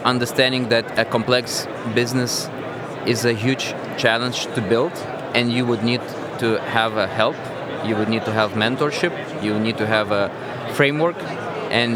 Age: 20-39